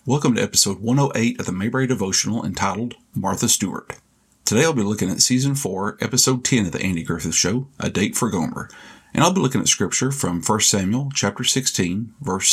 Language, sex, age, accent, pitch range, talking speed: English, male, 50-69, American, 100-135 Hz, 195 wpm